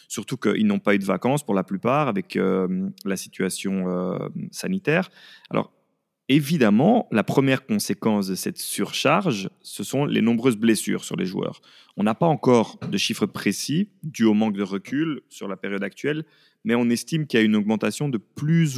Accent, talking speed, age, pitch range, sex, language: French, 185 wpm, 30-49, 105-145 Hz, male, French